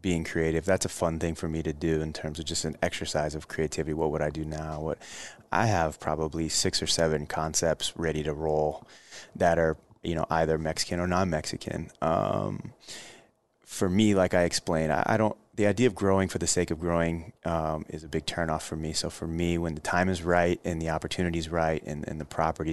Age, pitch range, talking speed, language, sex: 20-39, 80-85 Hz, 220 wpm, English, male